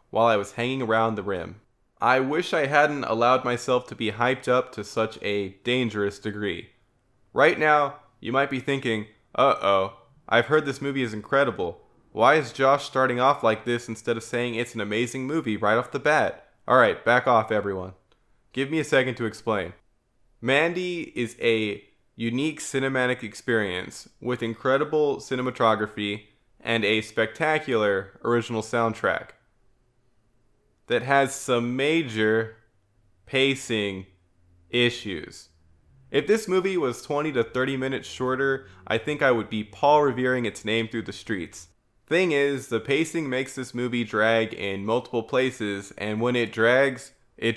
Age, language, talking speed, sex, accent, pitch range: 20-39, English, 155 wpm, male, American, 105-130 Hz